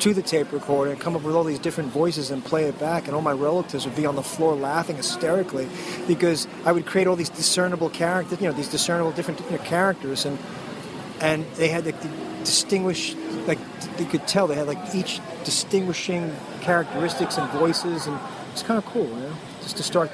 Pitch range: 155-180 Hz